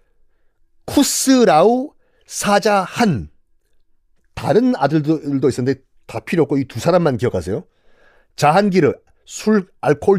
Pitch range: 145-230 Hz